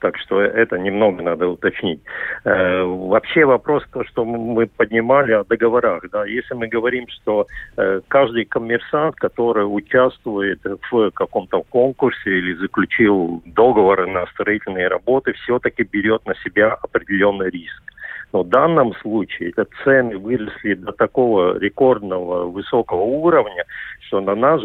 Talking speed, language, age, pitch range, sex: 125 wpm, Russian, 50-69, 100-125 Hz, male